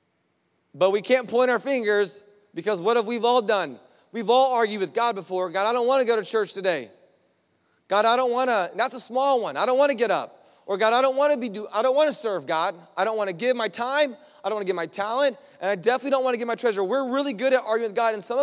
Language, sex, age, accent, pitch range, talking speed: English, male, 30-49, American, 185-245 Hz, 285 wpm